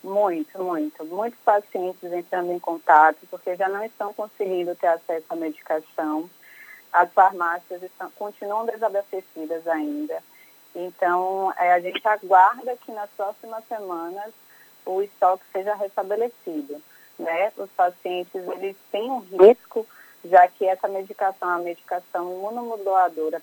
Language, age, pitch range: Portuguese, 20-39, 180-215 Hz